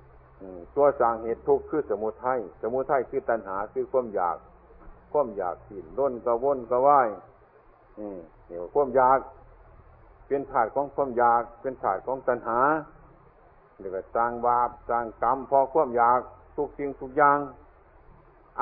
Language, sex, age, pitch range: Thai, male, 60-79, 110-160 Hz